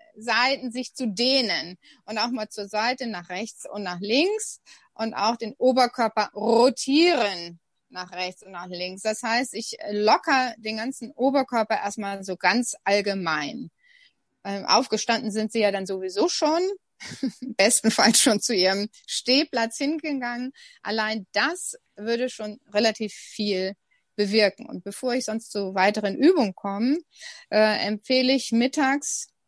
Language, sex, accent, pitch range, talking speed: German, female, German, 200-255 Hz, 140 wpm